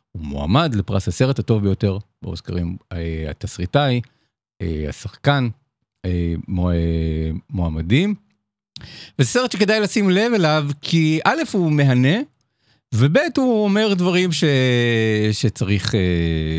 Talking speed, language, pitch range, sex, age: 100 wpm, Hebrew, 95-150 Hz, male, 50-69